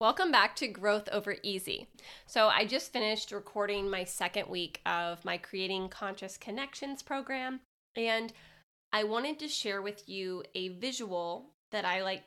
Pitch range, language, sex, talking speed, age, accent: 190-230 Hz, English, female, 155 wpm, 20-39, American